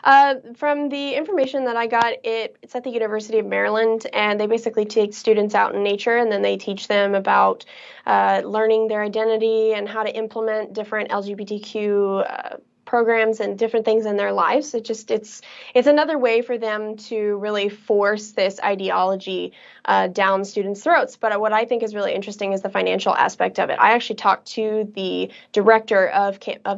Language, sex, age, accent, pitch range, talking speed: English, female, 10-29, American, 205-235 Hz, 190 wpm